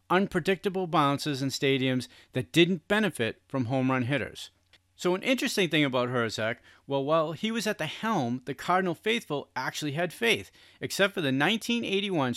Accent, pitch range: American, 120-175 Hz